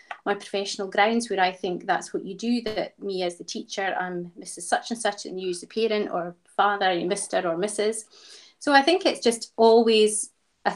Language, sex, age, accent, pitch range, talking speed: English, female, 30-49, British, 190-235 Hz, 205 wpm